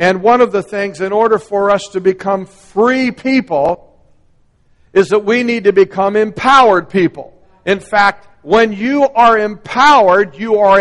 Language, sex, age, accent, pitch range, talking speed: English, male, 60-79, American, 190-230 Hz, 160 wpm